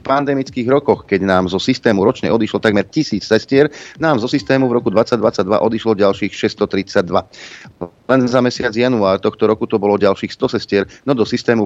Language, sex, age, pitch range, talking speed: Slovak, male, 40-59, 95-120 Hz, 175 wpm